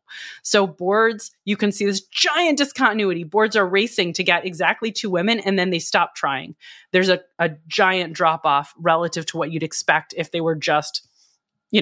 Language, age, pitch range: English, 20-39, 165-215 Hz